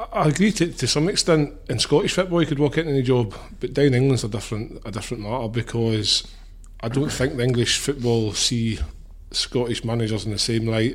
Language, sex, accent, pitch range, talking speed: English, male, British, 110-130 Hz, 195 wpm